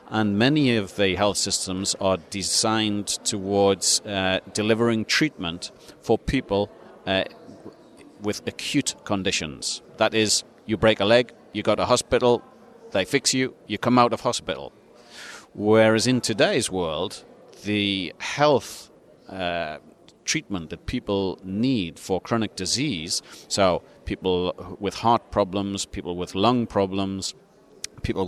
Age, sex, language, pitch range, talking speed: 40-59, male, English, 95-120 Hz, 125 wpm